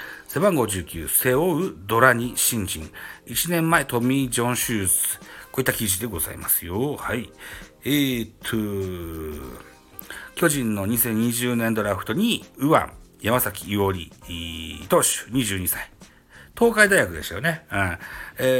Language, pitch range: Japanese, 95-155 Hz